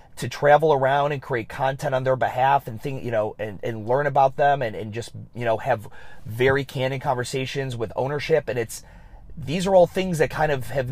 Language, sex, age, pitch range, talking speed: English, male, 30-49, 120-145 Hz, 215 wpm